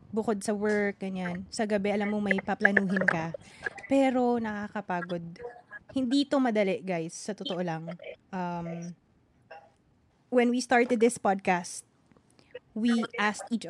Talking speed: 125 wpm